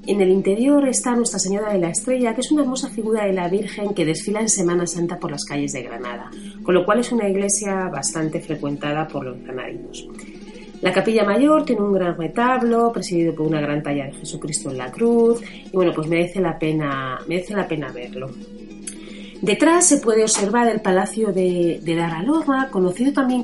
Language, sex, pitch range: Spanish, female, 165-210 Hz